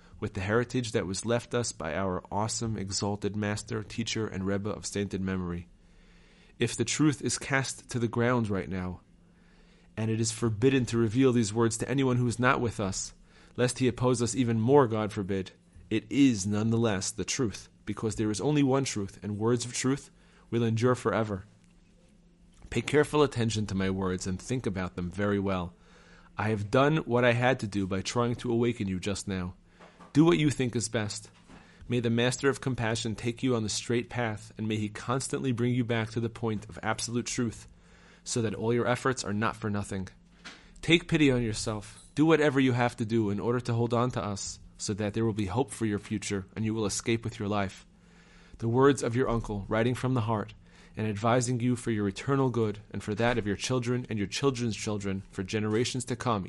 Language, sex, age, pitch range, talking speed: English, male, 30-49, 100-125 Hz, 210 wpm